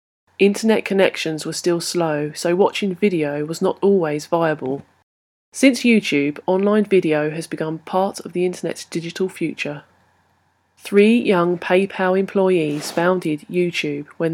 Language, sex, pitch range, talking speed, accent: English, female, 150-185 Hz, 130 wpm, British